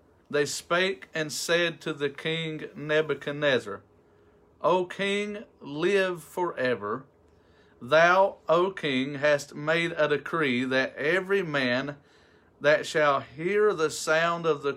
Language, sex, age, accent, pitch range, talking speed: English, male, 40-59, American, 135-160 Hz, 120 wpm